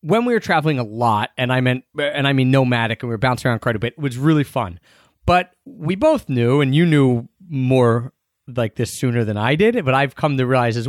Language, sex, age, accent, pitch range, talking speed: English, male, 30-49, American, 120-155 Hz, 250 wpm